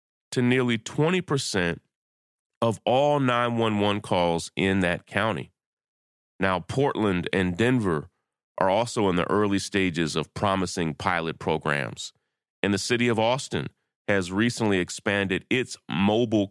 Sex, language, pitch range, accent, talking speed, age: male, English, 90-115 Hz, American, 125 wpm, 30-49